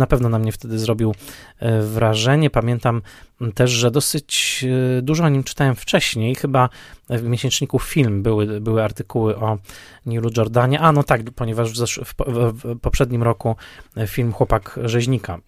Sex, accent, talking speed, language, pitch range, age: male, native, 140 wpm, Polish, 110-130 Hz, 20-39